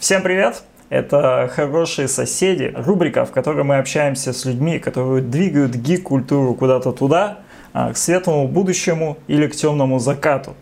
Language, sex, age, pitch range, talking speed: Russian, male, 20-39, 130-170 Hz, 135 wpm